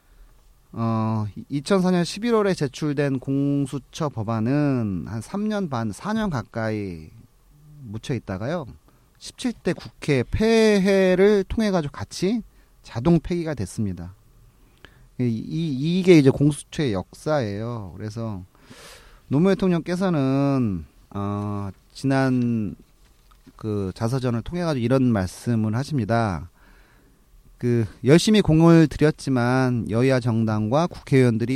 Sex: male